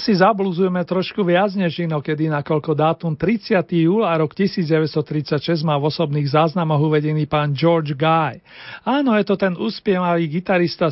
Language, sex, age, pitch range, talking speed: Slovak, male, 40-59, 160-185 Hz, 155 wpm